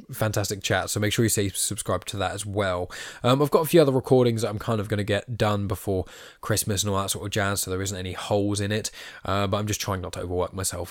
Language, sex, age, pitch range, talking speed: English, male, 10-29, 100-125 Hz, 280 wpm